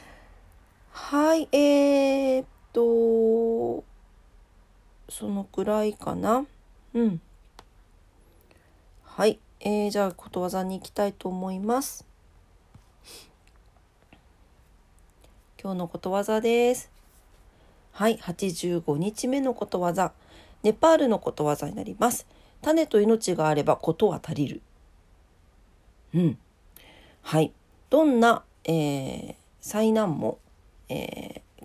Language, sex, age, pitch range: Japanese, female, 40-59, 155-225 Hz